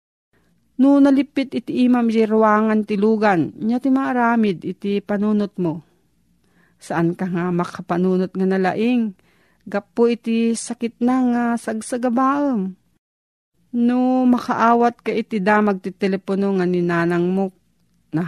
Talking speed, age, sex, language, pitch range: 110 wpm, 40-59, female, Filipino, 190-235 Hz